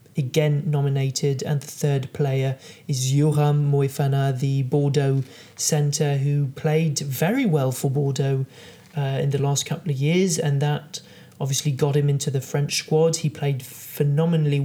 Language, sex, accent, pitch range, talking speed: English, male, British, 140-155 Hz, 150 wpm